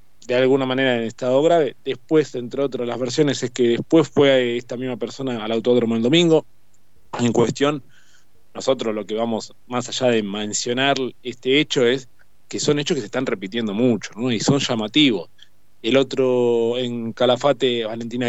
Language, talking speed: Spanish, 165 wpm